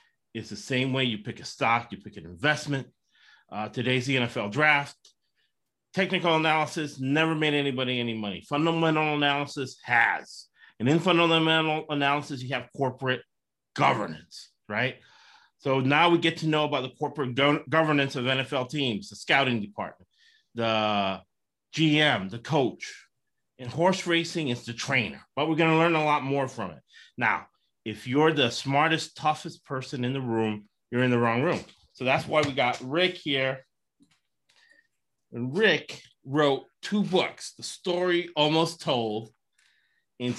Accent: American